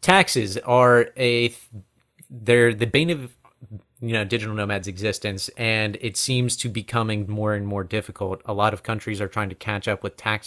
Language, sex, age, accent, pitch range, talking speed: English, male, 30-49, American, 100-120 Hz, 190 wpm